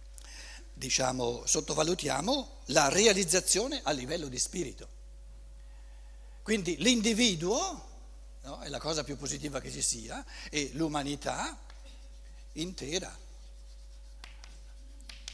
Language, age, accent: Italian, 60-79, native